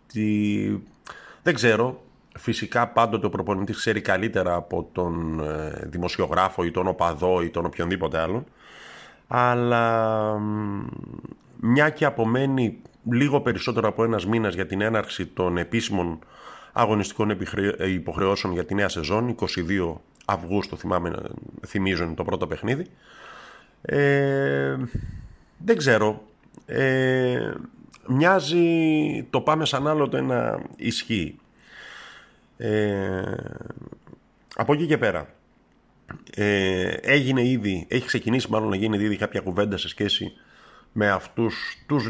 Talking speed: 115 wpm